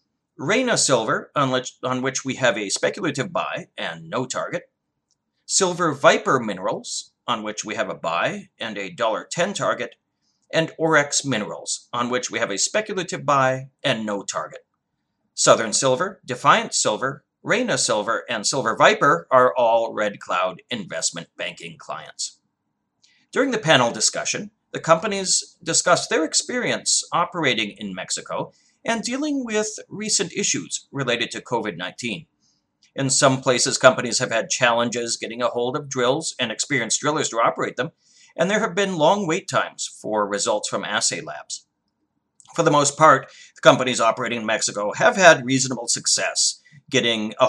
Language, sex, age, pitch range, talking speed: English, male, 40-59, 120-165 Hz, 155 wpm